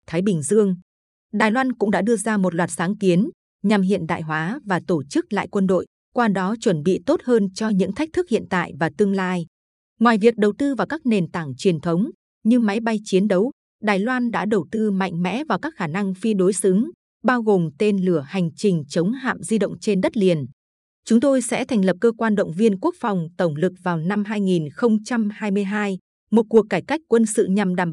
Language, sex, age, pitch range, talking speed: Vietnamese, female, 20-39, 180-230 Hz, 225 wpm